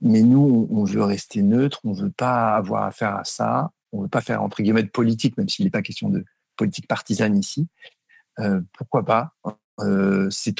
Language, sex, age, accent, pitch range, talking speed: French, male, 50-69, French, 100-125 Hz, 205 wpm